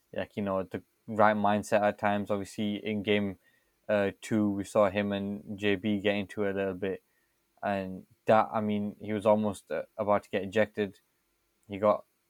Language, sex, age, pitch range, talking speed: English, male, 10-29, 100-110 Hz, 180 wpm